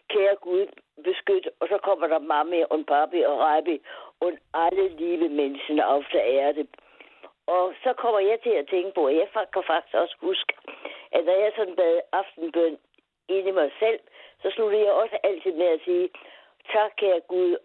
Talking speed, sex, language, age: 180 wpm, female, Danish, 60-79